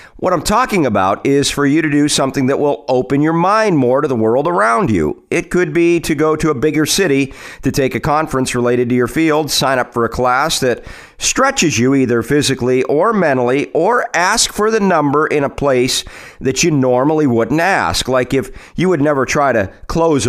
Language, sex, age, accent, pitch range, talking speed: English, male, 40-59, American, 125-155 Hz, 210 wpm